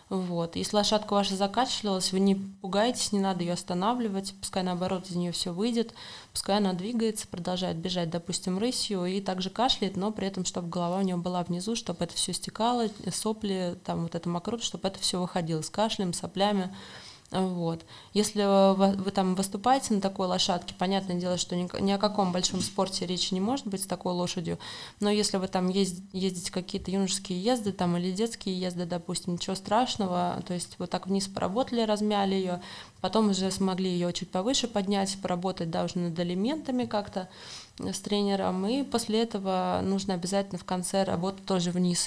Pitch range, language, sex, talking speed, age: 180-205 Hz, Russian, female, 175 wpm, 20-39